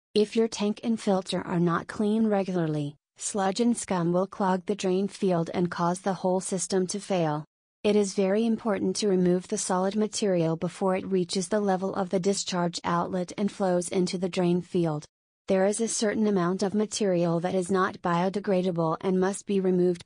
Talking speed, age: 190 wpm, 30-49